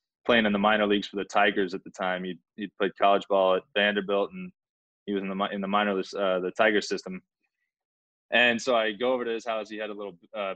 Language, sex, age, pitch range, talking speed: English, male, 20-39, 95-110 Hz, 245 wpm